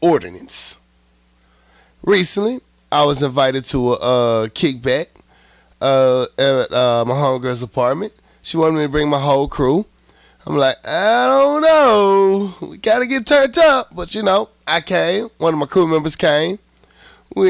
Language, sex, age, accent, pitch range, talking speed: English, male, 30-49, American, 125-195 Hz, 160 wpm